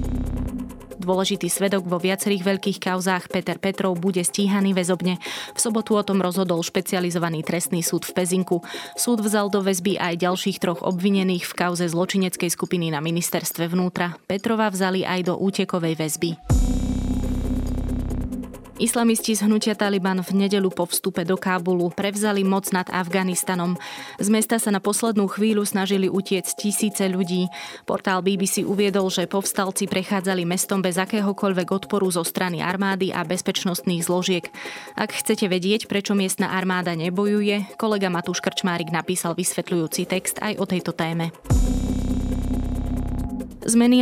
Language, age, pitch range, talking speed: Slovak, 20-39, 175-195 Hz, 135 wpm